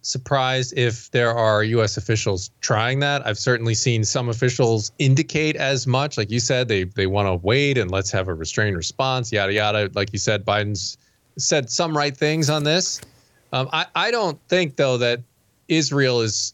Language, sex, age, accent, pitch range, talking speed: English, male, 20-39, American, 110-140 Hz, 185 wpm